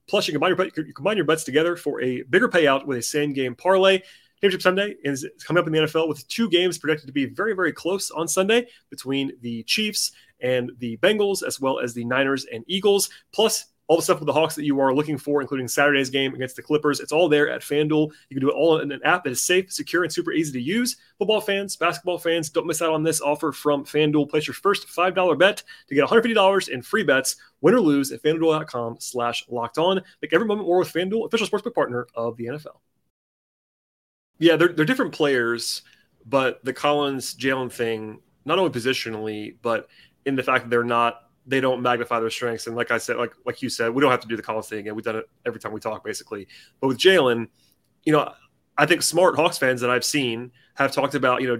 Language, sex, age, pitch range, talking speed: English, male, 30-49, 125-165 Hz, 230 wpm